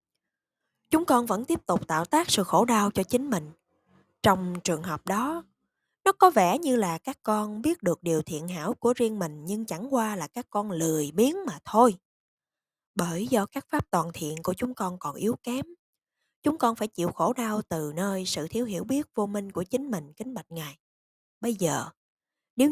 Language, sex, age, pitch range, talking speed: Vietnamese, female, 20-39, 175-250 Hz, 205 wpm